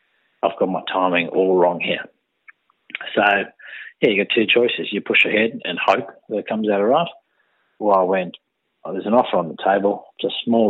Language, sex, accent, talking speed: English, male, Australian, 210 wpm